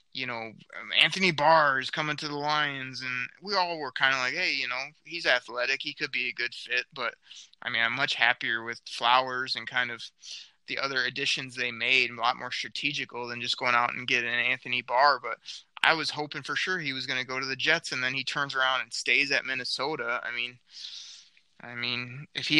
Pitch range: 125-150 Hz